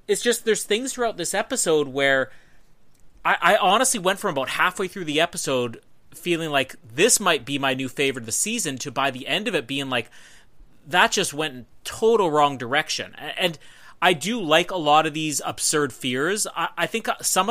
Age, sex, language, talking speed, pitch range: 30-49, male, English, 200 wpm, 140-205 Hz